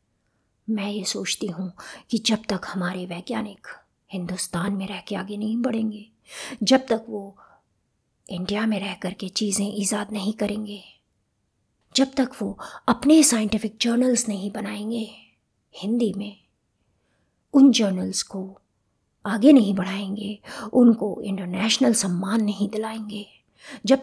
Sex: female